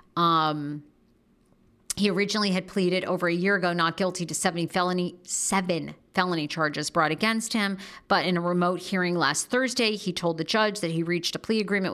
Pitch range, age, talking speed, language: 165-210 Hz, 40-59, 185 wpm, English